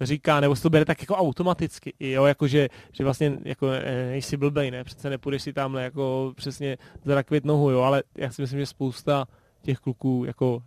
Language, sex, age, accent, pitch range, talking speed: Czech, male, 20-39, native, 140-160 Hz, 190 wpm